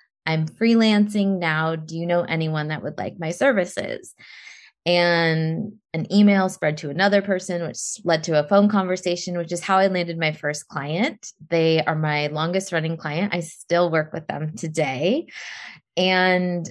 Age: 20-39